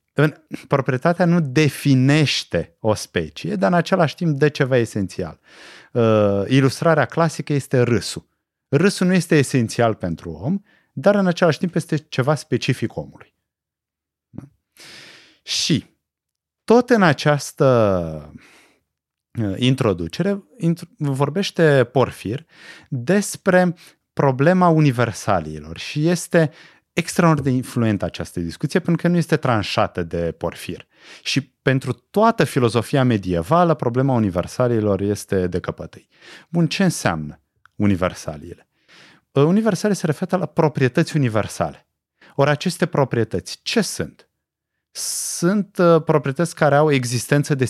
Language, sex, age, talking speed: Romanian, male, 30-49, 105 wpm